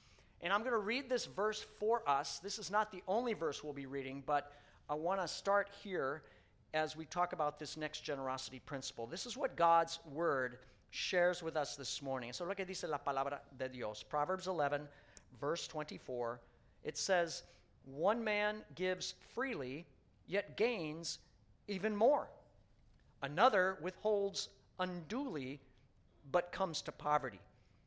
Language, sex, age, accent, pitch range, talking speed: English, male, 50-69, American, 135-205 Hz, 155 wpm